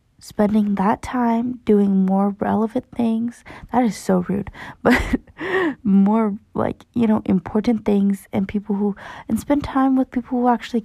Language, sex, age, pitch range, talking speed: English, female, 20-39, 190-230 Hz, 155 wpm